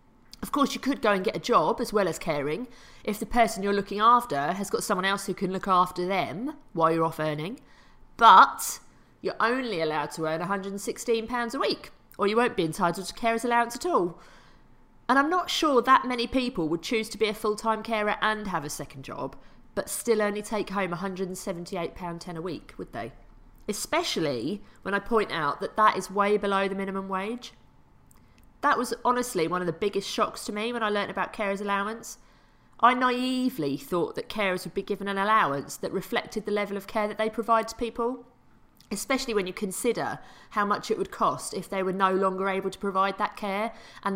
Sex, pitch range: female, 190-230 Hz